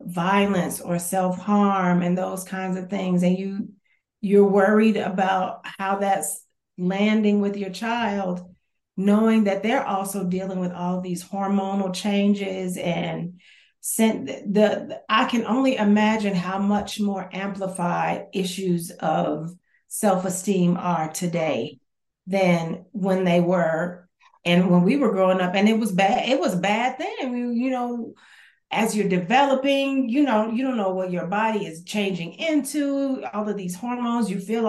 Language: English